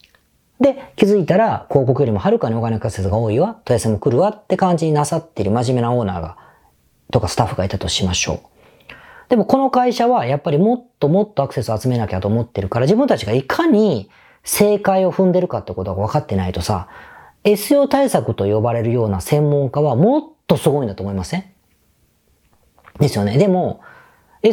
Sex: female